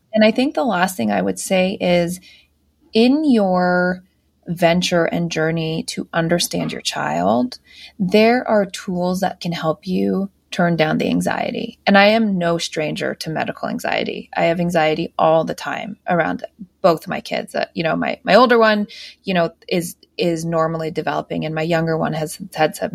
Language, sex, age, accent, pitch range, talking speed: English, female, 20-39, American, 170-225 Hz, 180 wpm